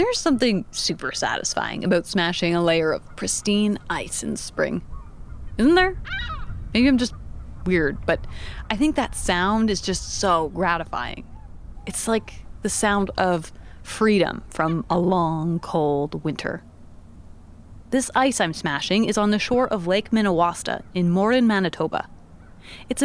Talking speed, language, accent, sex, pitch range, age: 140 wpm, English, American, female, 170-240 Hz, 30-49